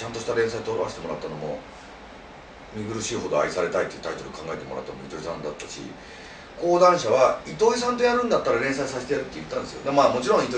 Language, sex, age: Japanese, male, 40-59